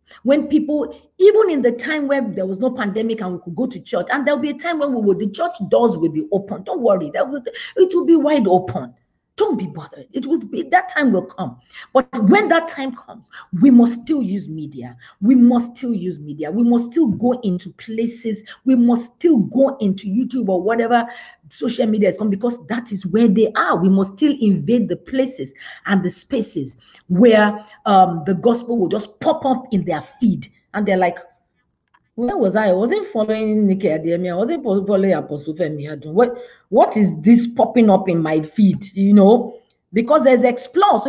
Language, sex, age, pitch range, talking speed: English, female, 50-69, 200-280 Hz, 200 wpm